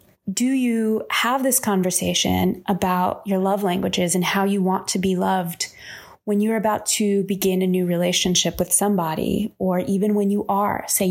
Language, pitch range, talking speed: English, 190-230 Hz, 175 wpm